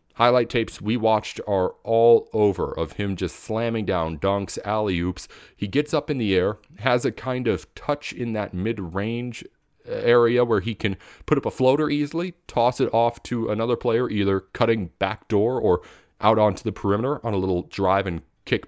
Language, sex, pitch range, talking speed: English, male, 95-120 Hz, 185 wpm